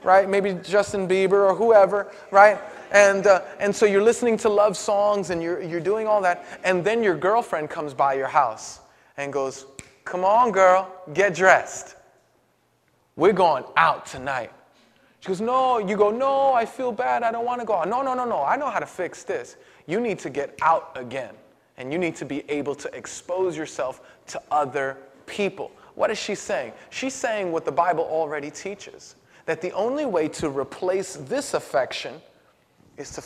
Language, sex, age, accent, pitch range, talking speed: English, male, 20-39, American, 165-215 Hz, 190 wpm